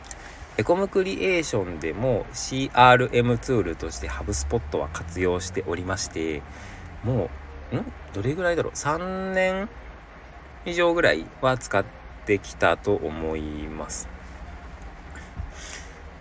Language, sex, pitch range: Japanese, male, 80-125 Hz